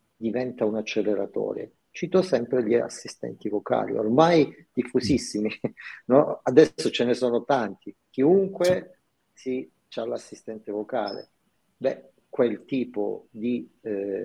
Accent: native